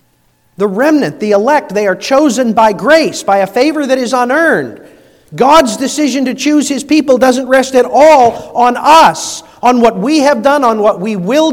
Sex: male